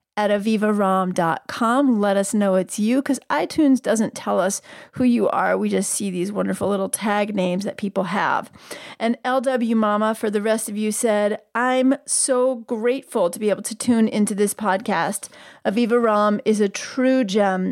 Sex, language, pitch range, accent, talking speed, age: female, English, 200-250 Hz, American, 175 wpm, 30-49